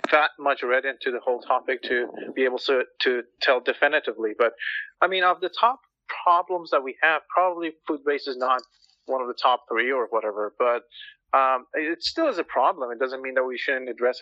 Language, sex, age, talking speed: English, male, 30-49, 210 wpm